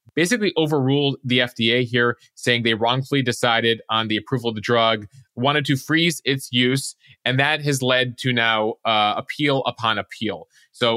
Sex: male